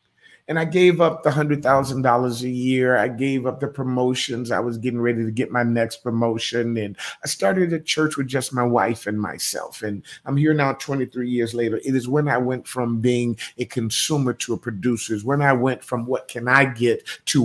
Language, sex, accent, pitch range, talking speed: English, male, American, 120-150 Hz, 210 wpm